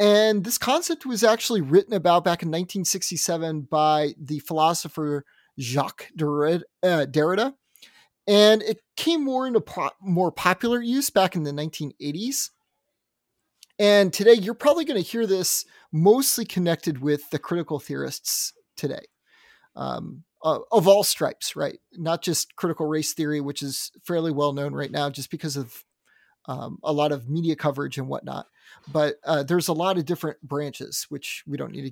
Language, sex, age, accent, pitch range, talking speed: English, male, 30-49, American, 155-205 Hz, 160 wpm